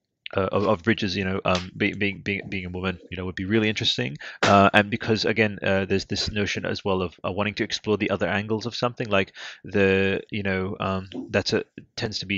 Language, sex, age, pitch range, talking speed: English, male, 20-39, 95-110 Hz, 235 wpm